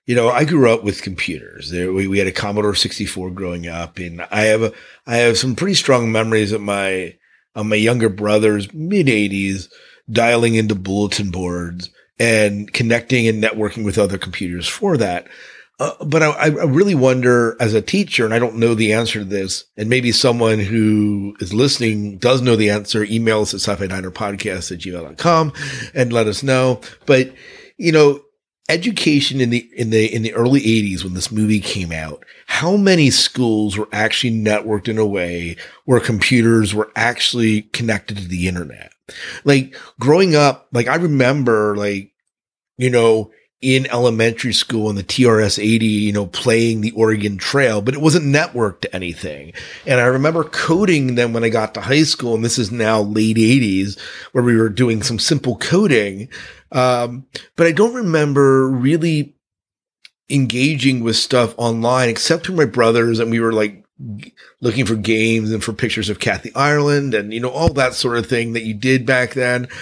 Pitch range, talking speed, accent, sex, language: 105-130 Hz, 175 wpm, American, male, English